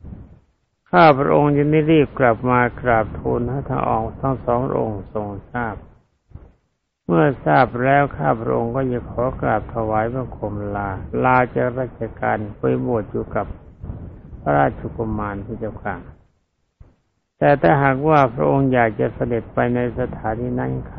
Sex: male